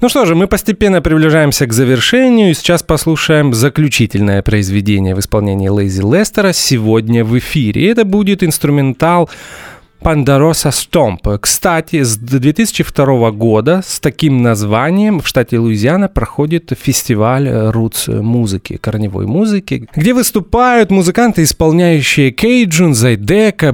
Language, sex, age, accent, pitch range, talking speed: Russian, male, 30-49, native, 110-165 Hz, 120 wpm